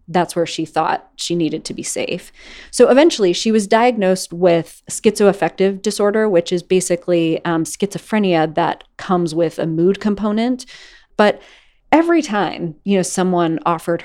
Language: English